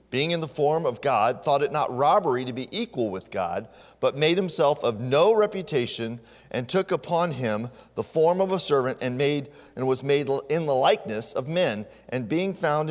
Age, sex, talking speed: 40-59, male, 200 wpm